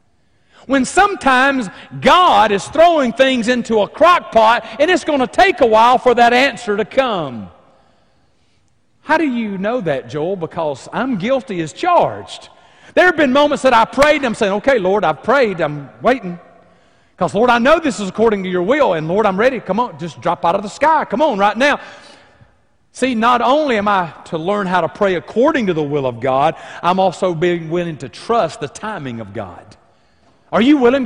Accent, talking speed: American, 205 wpm